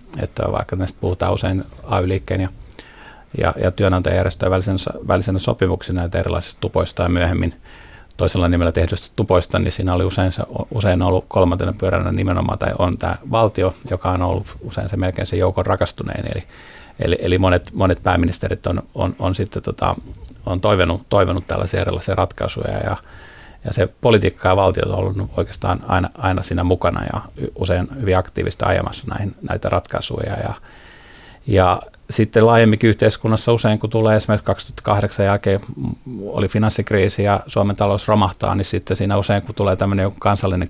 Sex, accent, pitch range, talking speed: male, native, 90-105 Hz, 155 wpm